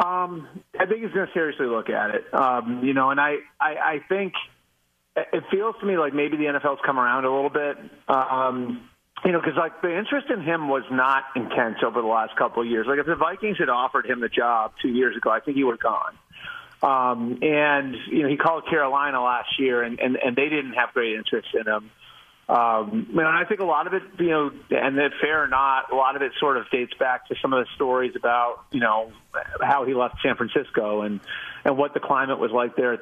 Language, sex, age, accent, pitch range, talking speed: English, male, 30-49, American, 120-155 Hz, 240 wpm